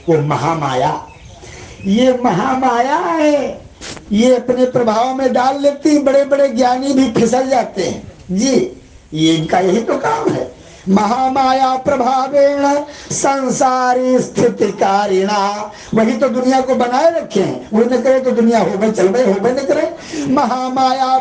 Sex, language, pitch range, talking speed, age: male, Hindi, 225-290 Hz, 135 wpm, 60-79